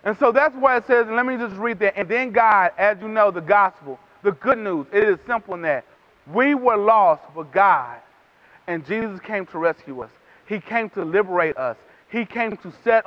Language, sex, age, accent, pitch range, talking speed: English, male, 30-49, American, 160-225 Hz, 215 wpm